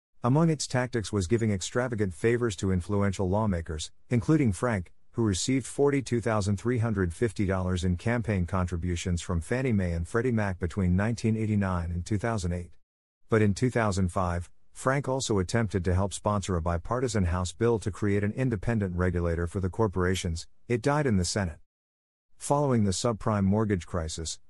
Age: 50-69